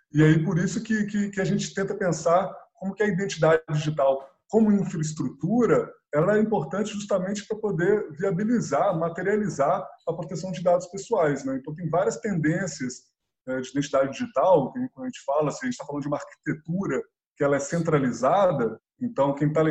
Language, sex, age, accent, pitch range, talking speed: Portuguese, male, 20-39, Brazilian, 150-195 Hz, 180 wpm